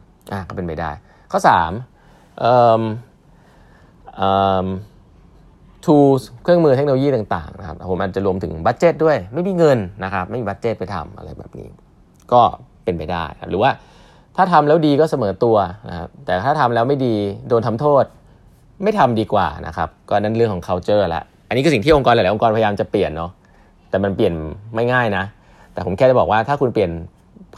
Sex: male